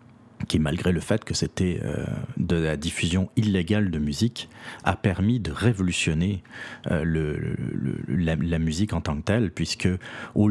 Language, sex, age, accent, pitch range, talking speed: French, male, 30-49, French, 90-120 Hz, 170 wpm